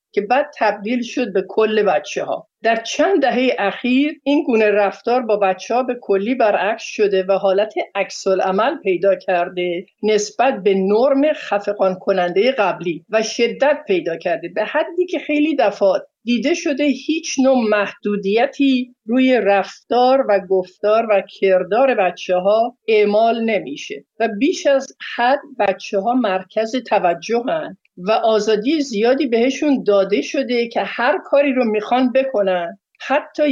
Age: 50-69